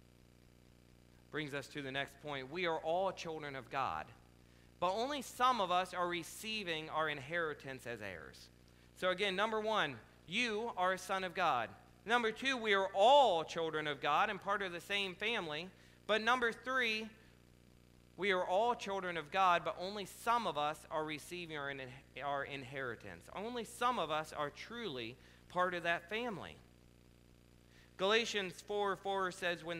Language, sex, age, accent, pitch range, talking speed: English, male, 40-59, American, 145-200 Hz, 160 wpm